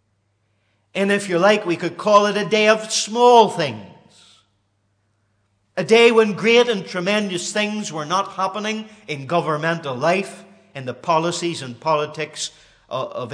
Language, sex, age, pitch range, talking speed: English, male, 50-69, 155-210 Hz, 145 wpm